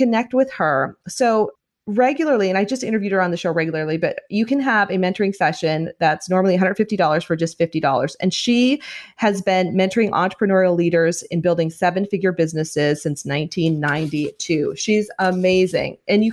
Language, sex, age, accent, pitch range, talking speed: English, female, 30-49, American, 170-220 Hz, 165 wpm